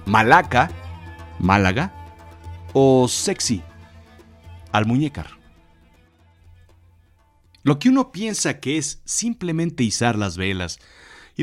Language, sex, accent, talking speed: Spanish, male, Mexican, 90 wpm